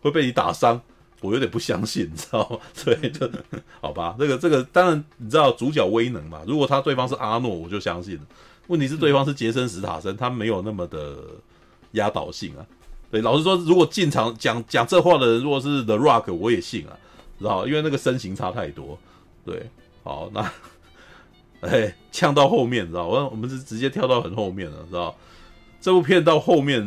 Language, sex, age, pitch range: Chinese, male, 30-49, 105-145 Hz